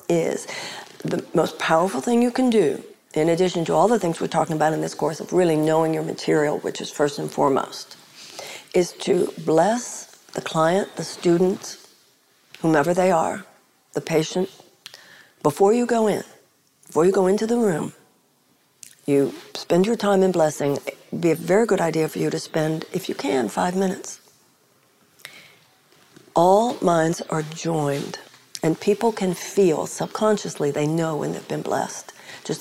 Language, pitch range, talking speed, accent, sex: English, 155-210 Hz, 165 wpm, American, female